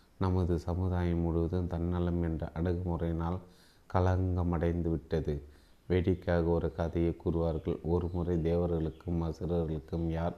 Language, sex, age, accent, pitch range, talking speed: Tamil, male, 30-49, native, 80-85 Hz, 100 wpm